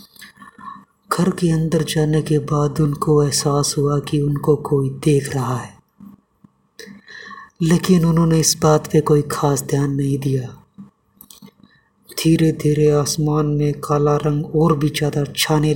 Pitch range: 145-160 Hz